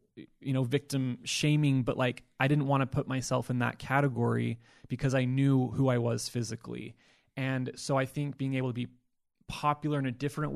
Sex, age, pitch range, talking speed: male, 20-39, 120-135 Hz, 195 wpm